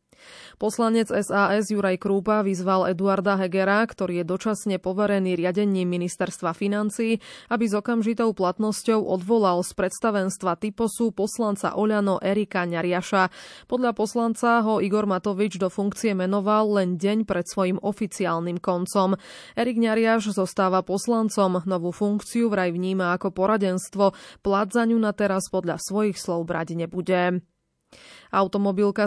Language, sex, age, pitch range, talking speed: Slovak, female, 20-39, 185-215 Hz, 125 wpm